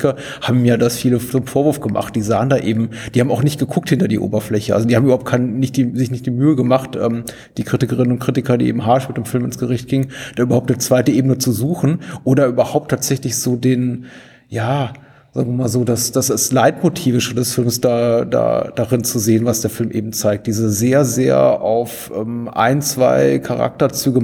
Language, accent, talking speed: German, German, 210 wpm